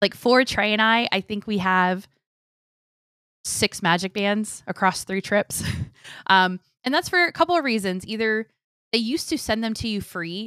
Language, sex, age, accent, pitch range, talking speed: English, female, 20-39, American, 165-210 Hz, 185 wpm